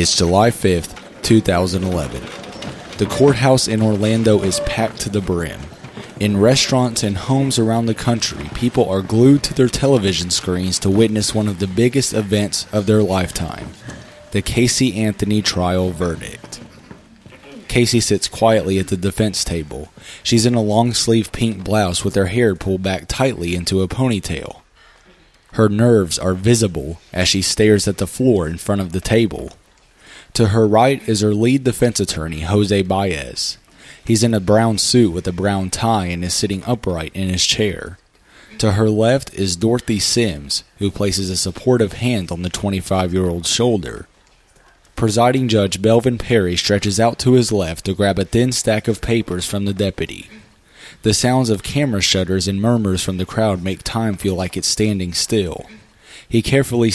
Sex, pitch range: male, 95-115 Hz